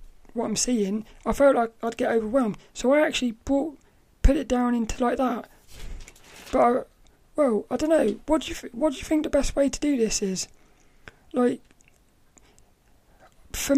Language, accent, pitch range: English, British, 225-275 Hz